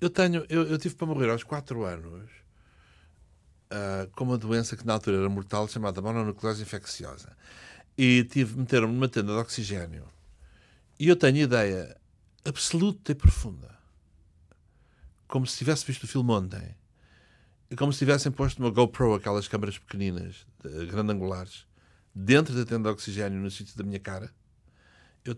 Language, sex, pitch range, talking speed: Portuguese, male, 95-130 Hz, 155 wpm